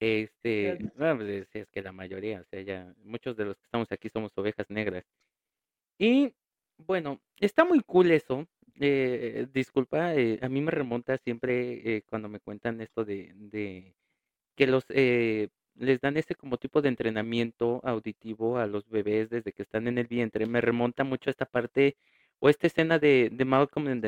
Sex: male